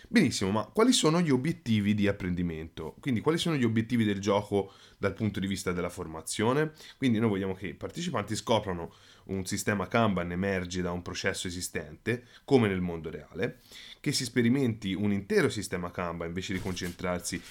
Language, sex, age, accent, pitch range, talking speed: Italian, male, 20-39, native, 90-115 Hz, 170 wpm